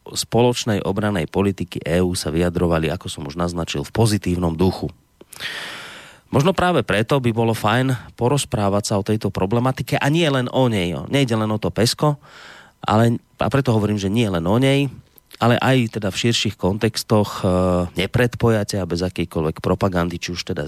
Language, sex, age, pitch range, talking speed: Slovak, male, 30-49, 90-120 Hz, 170 wpm